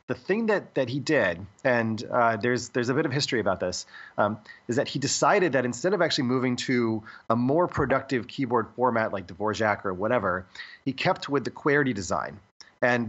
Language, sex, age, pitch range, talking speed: English, male, 30-49, 115-150 Hz, 195 wpm